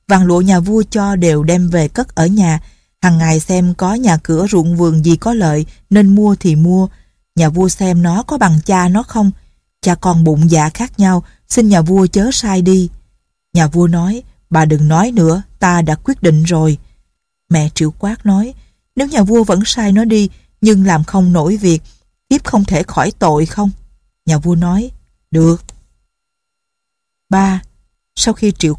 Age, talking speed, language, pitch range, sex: 20-39, 185 wpm, Vietnamese, 160-205 Hz, female